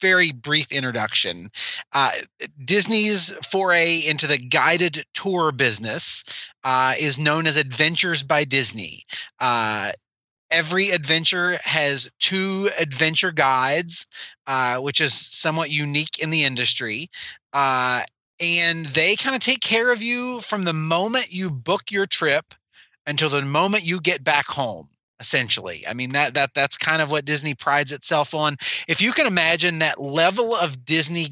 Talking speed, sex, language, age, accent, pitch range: 150 wpm, male, English, 30-49, American, 145-175 Hz